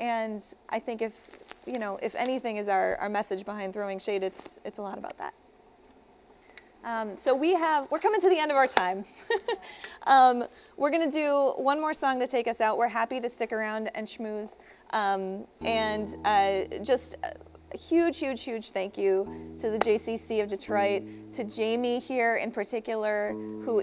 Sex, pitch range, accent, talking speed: female, 205-270 Hz, American, 190 wpm